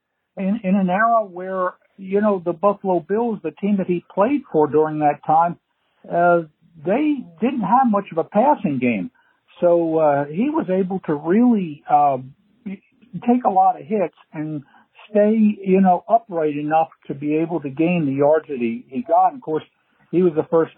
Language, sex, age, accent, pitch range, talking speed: English, male, 60-79, American, 155-210 Hz, 185 wpm